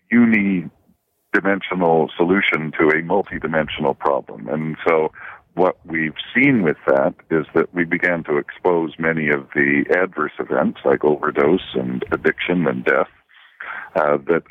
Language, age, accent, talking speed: English, 60-79, American, 130 wpm